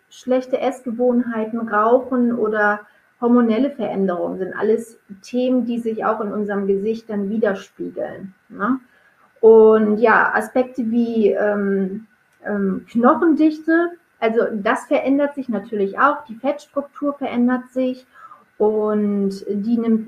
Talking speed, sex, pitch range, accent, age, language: 110 wpm, female, 210-270 Hz, German, 30-49, German